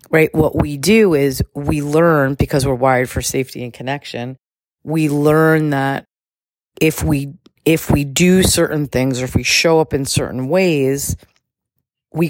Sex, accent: female, American